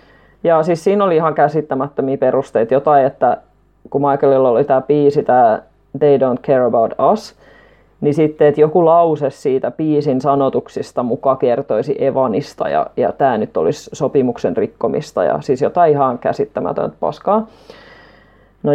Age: 20-39